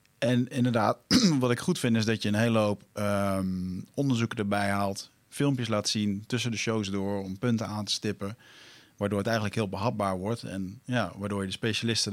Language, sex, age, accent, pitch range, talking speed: Dutch, male, 40-59, Dutch, 95-120 Hz, 200 wpm